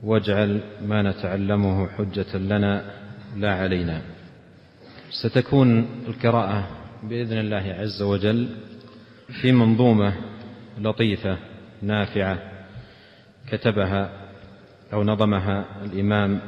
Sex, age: male, 40-59